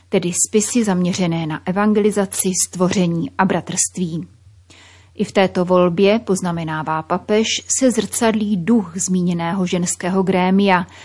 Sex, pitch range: female, 180-210 Hz